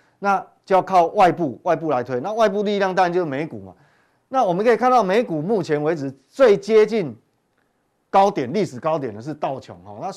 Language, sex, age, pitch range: Chinese, male, 30-49, 135-190 Hz